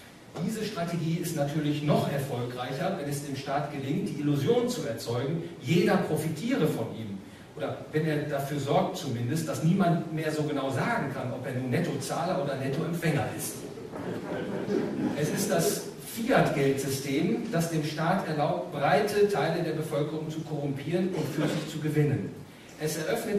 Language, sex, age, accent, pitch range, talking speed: English, male, 40-59, German, 135-175 Hz, 155 wpm